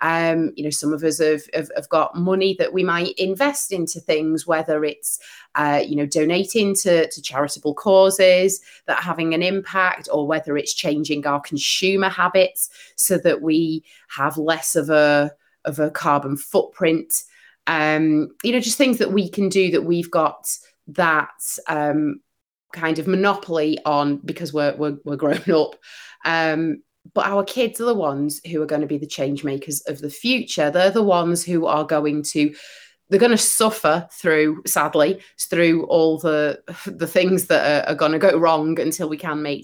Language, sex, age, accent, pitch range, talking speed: English, female, 30-49, British, 150-185 Hz, 185 wpm